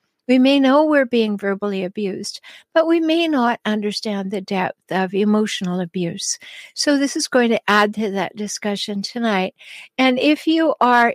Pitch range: 200-260 Hz